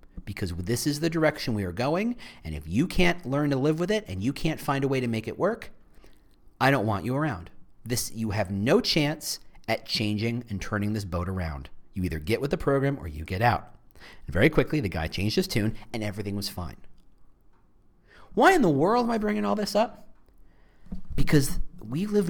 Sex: male